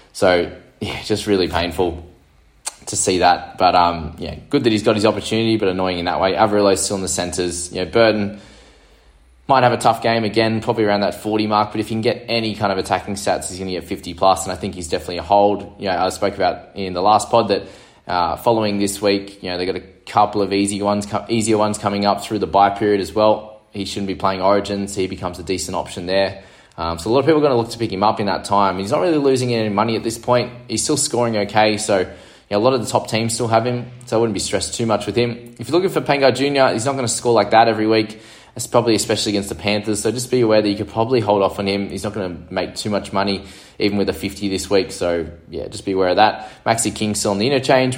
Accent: Australian